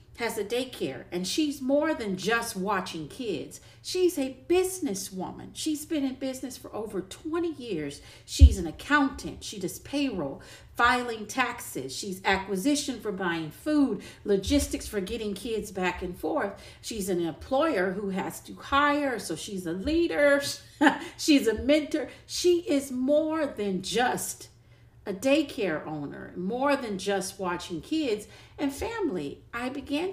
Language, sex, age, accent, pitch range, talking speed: English, female, 50-69, American, 190-285 Hz, 145 wpm